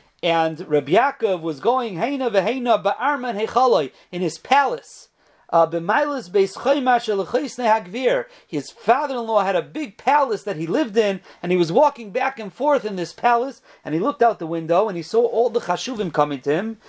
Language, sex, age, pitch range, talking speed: English, male, 40-59, 175-245 Hz, 165 wpm